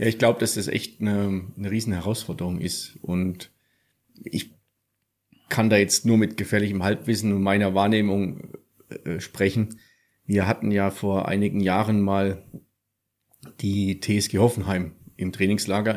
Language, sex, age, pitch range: German, male, 30-49, 95-110 Hz